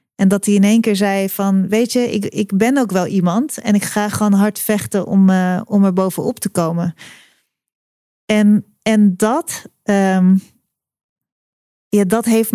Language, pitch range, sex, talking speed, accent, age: Dutch, 190-215 Hz, female, 170 wpm, Dutch, 30-49